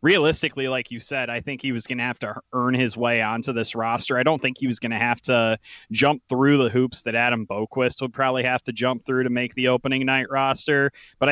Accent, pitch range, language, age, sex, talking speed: American, 115-135 Hz, English, 30-49, male, 250 wpm